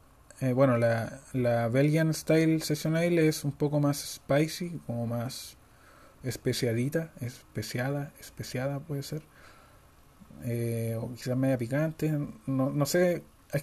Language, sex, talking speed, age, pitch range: Spanish, male, 125 wpm, 20-39, 125-155 Hz